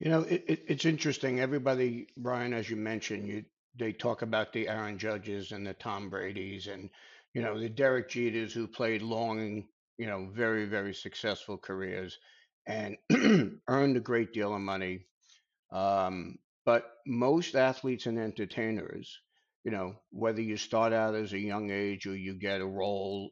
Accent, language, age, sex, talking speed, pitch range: American, English, 50-69, male, 165 wpm, 100-120 Hz